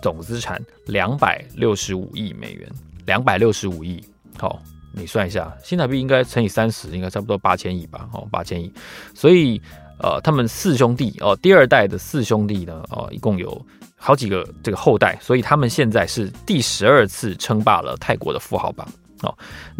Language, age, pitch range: Chinese, 20-39, 90-125 Hz